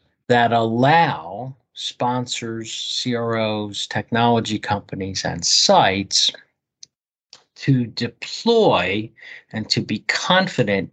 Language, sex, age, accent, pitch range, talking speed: English, male, 50-69, American, 110-145 Hz, 75 wpm